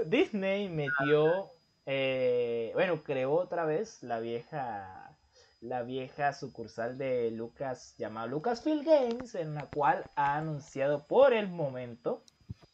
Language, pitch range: Spanish, 120-175 Hz